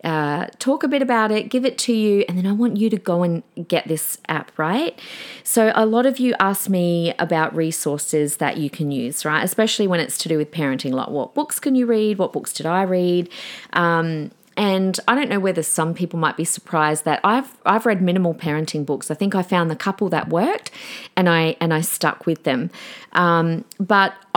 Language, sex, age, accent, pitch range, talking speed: English, female, 30-49, Australian, 155-210 Hz, 220 wpm